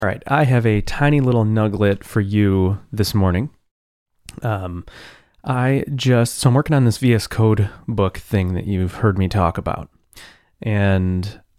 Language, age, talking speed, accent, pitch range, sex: English, 30-49, 160 wpm, American, 90-115 Hz, male